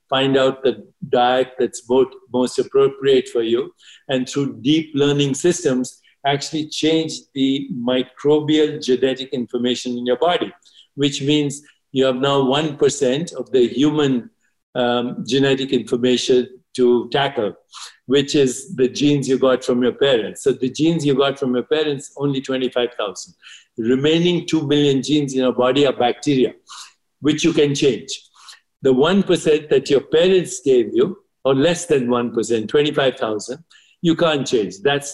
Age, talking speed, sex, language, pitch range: 50-69, 145 wpm, male, English, 125-150 Hz